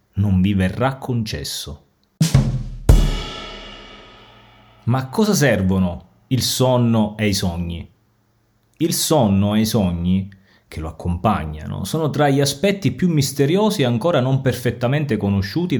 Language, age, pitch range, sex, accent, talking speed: Italian, 30-49, 100-145 Hz, male, native, 120 wpm